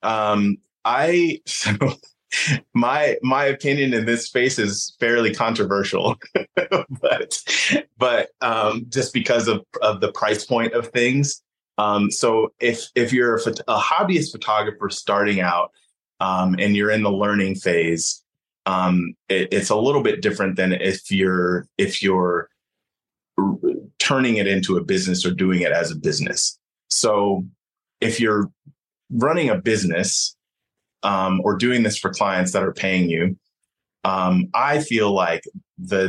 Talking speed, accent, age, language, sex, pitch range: 140 wpm, American, 30-49, English, male, 95-115 Hz